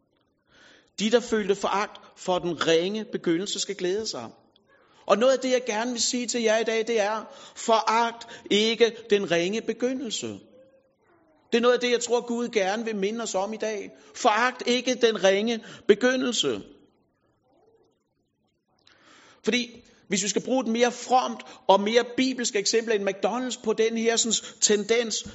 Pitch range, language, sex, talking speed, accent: 220-255 Hz, Danish, male, 165 wpm, native